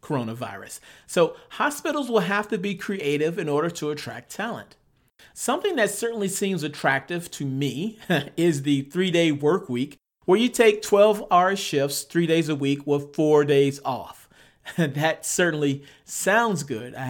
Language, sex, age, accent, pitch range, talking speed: English, male, 40-59, American, 140-190 Hz, 150 wpm